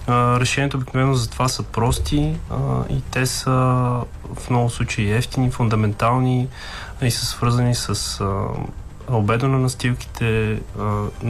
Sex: male